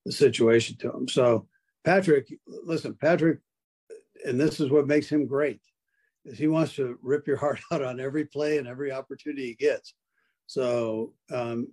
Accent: American